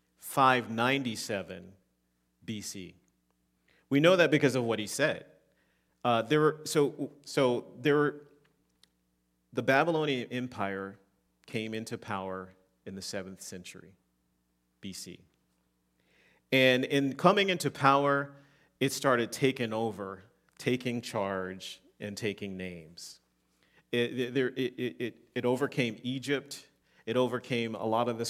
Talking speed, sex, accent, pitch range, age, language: 115 wpm, male, American, 95-125 Hz, 40-59, English